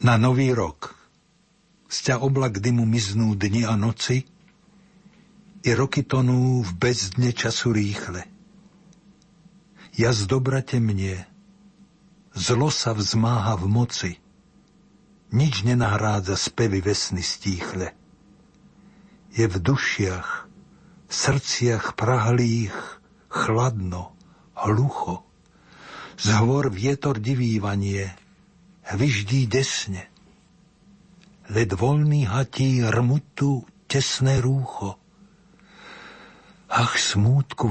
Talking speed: 80 wpm